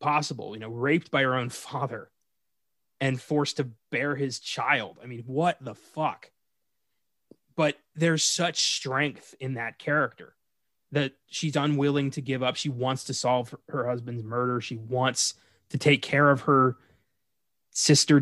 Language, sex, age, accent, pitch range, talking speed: English, male, 20-39, American, 120-150 Hz, 160 wpm